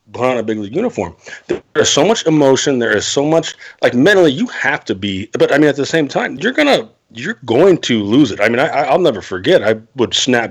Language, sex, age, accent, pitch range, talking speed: English, male, 40-59, American, 110-165 Hz, 250 wpm